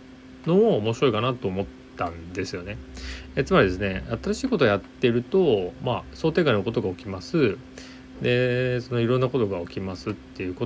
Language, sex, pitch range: Japanese, male, 90-130 Hz